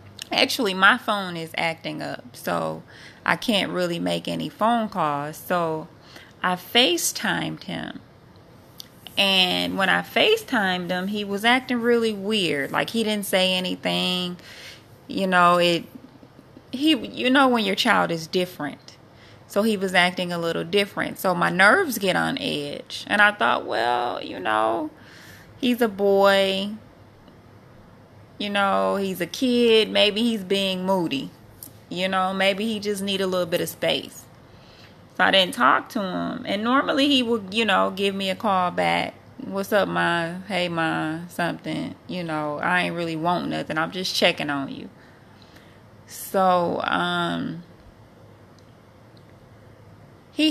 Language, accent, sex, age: English, American, female, 20-39